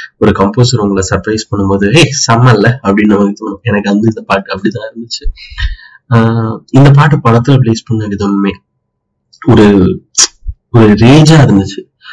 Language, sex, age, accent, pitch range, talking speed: Tamil, male, 30-49, native, 105-125 Hz, 125 wpm